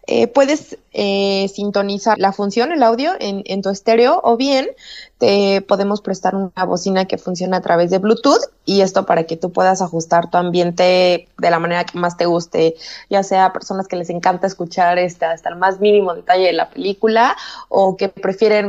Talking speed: 195 wpm